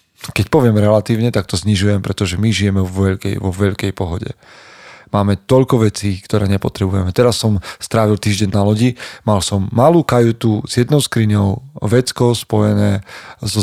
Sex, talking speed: male, 150 wpm